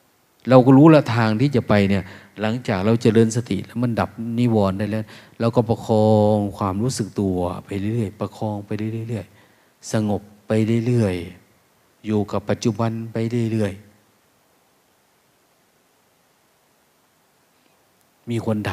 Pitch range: 100-120 Hz